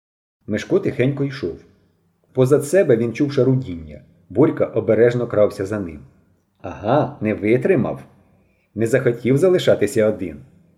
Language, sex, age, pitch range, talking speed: Ukrainian, male, 40-59, 100-145 Hz, 110 wpm